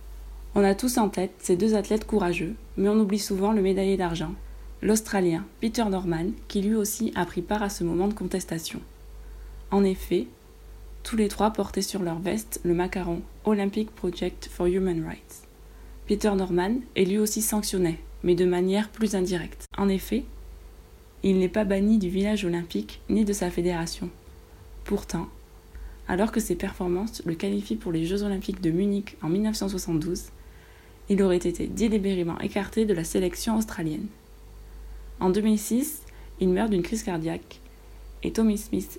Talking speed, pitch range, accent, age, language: 160 wpm, 165-200 Hz, French, 20-39, French